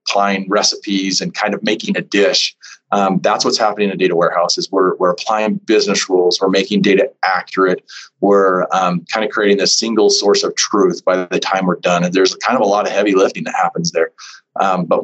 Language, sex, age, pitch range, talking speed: English, male, 30-49, 95-110 Hz, 215 wpm